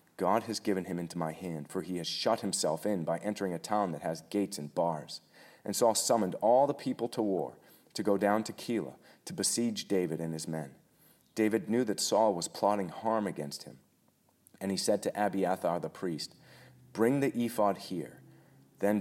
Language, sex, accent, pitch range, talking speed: English, male, American, 90-110 Hz, 195 wpm